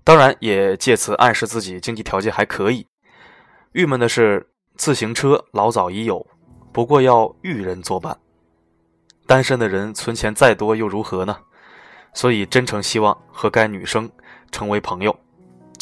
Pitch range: 95-140 Hz